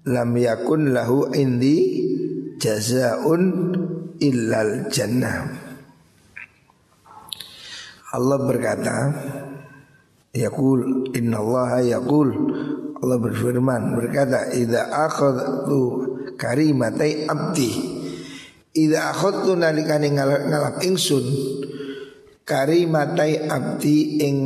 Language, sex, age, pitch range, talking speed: Indonesian, male, 50-69, 130-155 Hz, 65 wpm